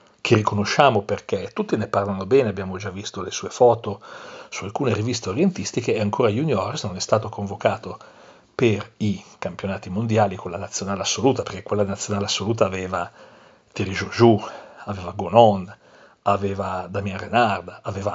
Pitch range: 100-115 Hz